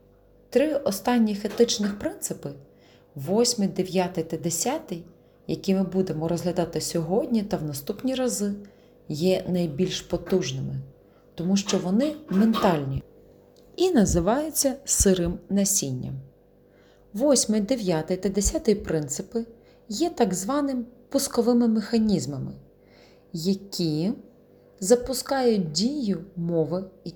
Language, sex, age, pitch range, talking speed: Ukrainian, female, 30-49, 160-230 Hz, 95 wpm